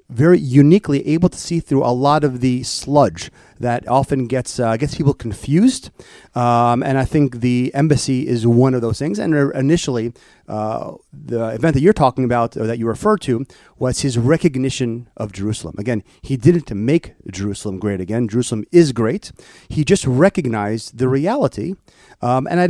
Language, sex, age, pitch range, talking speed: English, male, 30-49, 120-150 Hz, 175 wpm